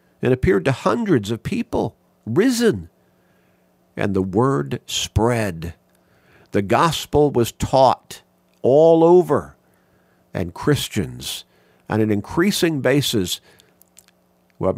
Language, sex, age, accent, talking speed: English, male, 50-69, American, 95 wpm